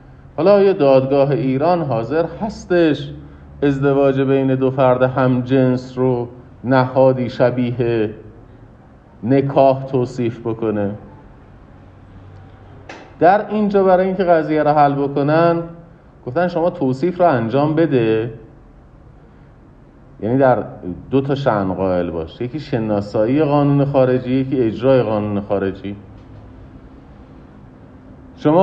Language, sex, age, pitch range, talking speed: Persian, male, 50-69, 120-150 Hz, 100 wpm